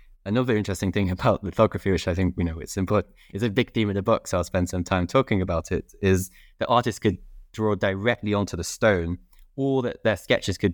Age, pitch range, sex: 20-39, 90-105 Hz, male